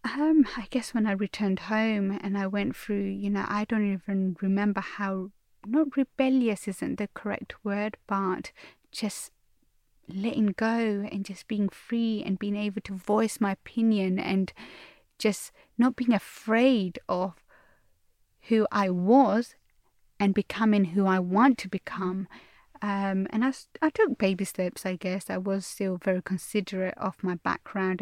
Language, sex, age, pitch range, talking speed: English, female, 20-39, 195-225 Hz, 155 wpm